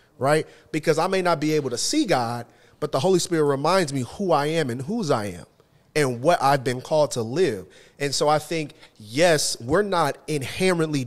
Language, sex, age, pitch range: English, male, 30-49, 120-155 Hz